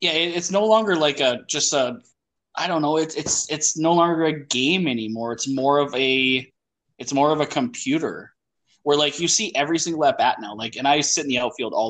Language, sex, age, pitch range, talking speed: English, male, 20-39, 130-175 Hz, 225 wpm